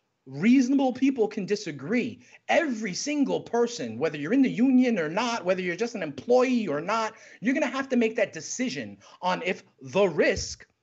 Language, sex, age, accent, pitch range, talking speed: English, male, 30-49, American, 165-245 Hz, 185 wpm